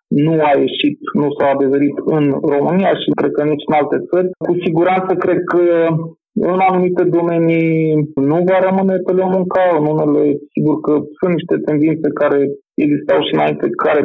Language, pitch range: Romanian, 150-175 Hz